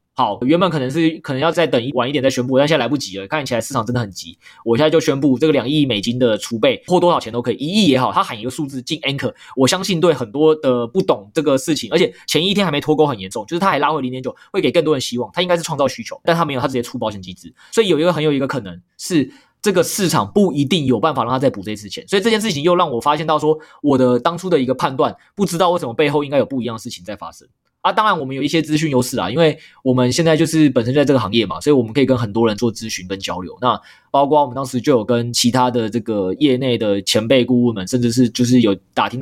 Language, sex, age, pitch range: Chinese, male, 20-39, 120-155 Hz